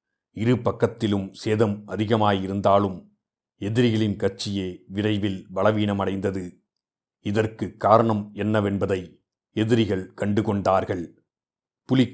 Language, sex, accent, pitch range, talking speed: Tamil, male, native, 100-110 Hz, 70 wpm